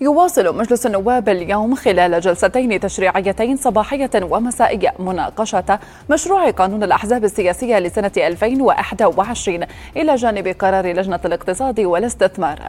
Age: 30-49